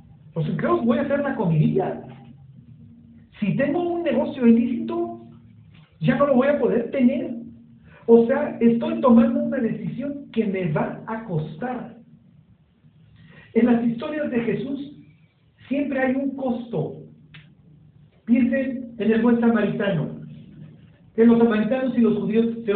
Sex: male